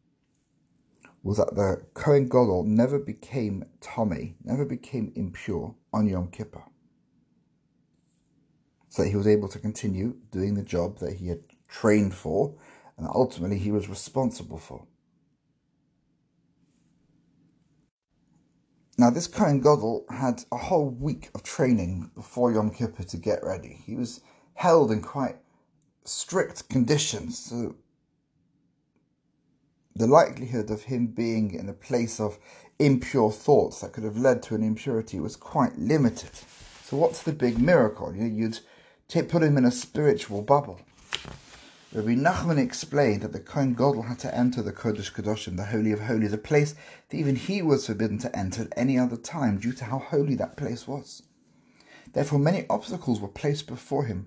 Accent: British